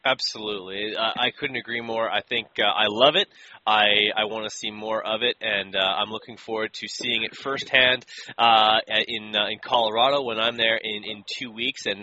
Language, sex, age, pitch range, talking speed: English, male, 20-39, 105-120 Hz, 210 wpm